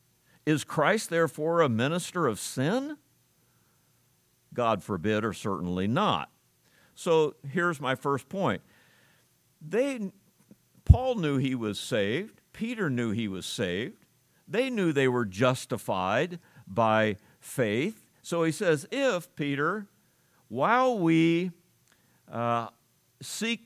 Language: English